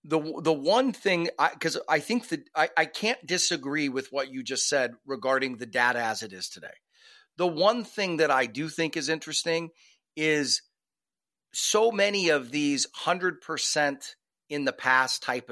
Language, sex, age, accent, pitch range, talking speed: English, male, 40-59, American, 140-180 Hz, 175 wpm